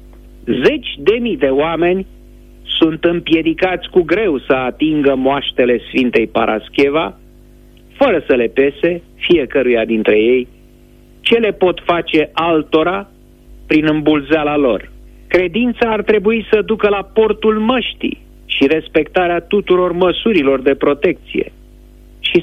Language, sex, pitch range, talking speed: Romanian, male, 125-195 Hz, 120 wpm